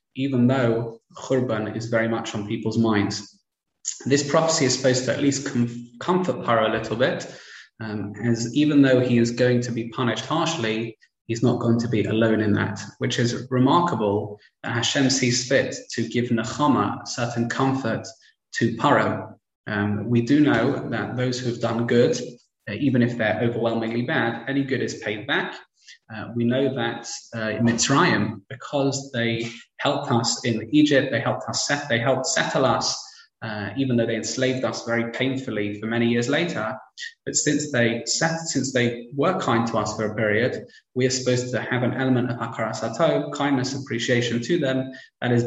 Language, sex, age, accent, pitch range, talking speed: English, male, 20-39, British, 115-130 Hz, 180 wpm